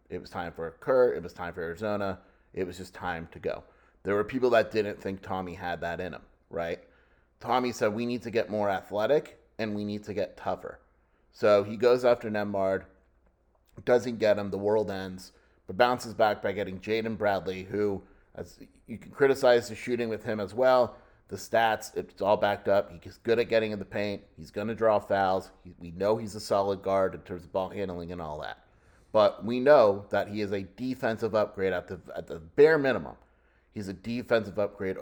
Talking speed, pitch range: 210 wpm, 95-110 Hz